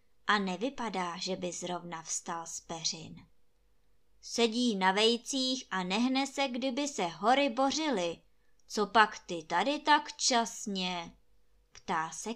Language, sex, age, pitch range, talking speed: Czech, male, 20-39, 190-245 Hz, 120 wpm